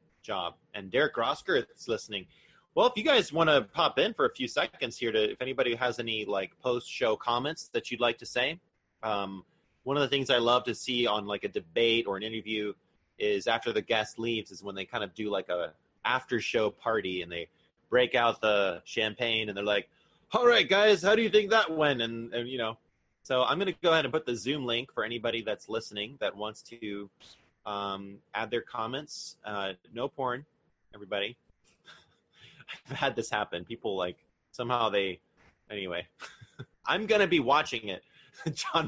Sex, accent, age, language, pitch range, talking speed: male, American, 30-49, English, 105-140 Hz, 195 wpm